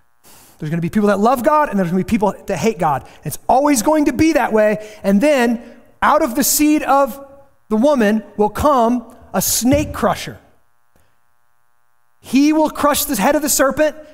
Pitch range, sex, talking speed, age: 210-275 Hz, male, 185 wpm, 30-49